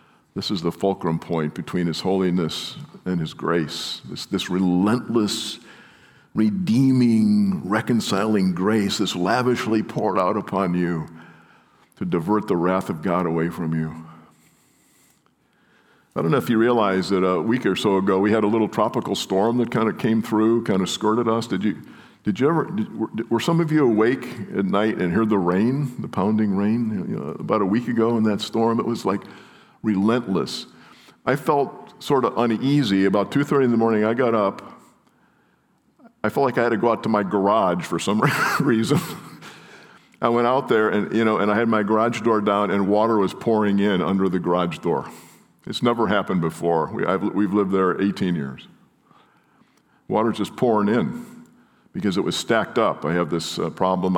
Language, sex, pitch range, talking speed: English, male, 90-115 Hz, 180 wpm